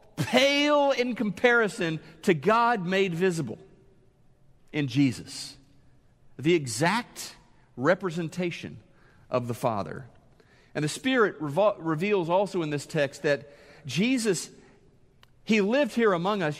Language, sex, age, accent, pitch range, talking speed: English, male, 40-59, American, 145-220 Hz, 110 wpm